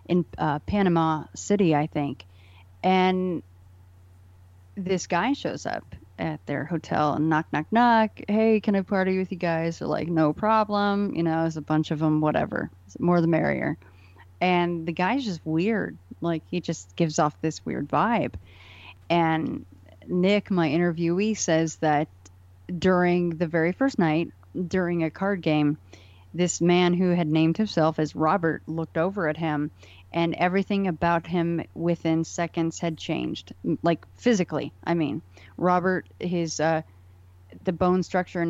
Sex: female